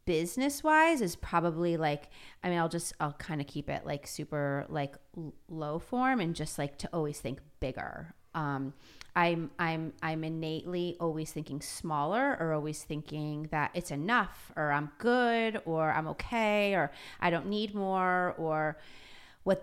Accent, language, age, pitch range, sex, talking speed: American, English, 30-49, 150-185 Hz, female, 160 wpm